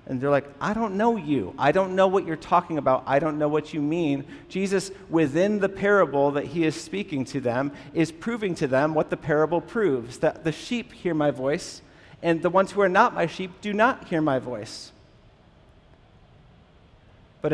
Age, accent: 40-59, American